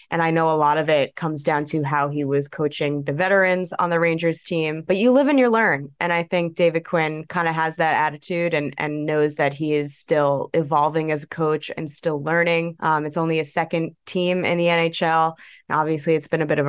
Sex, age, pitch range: female, 20-39, 150-175 Hz